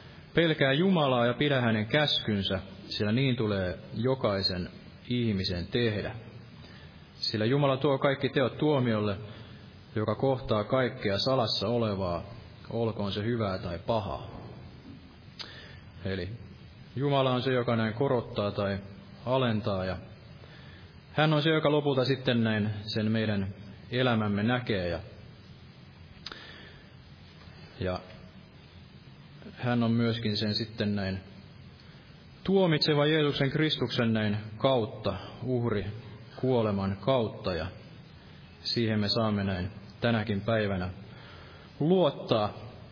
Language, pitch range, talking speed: Finnish, 100-130 Hz, 100 wpm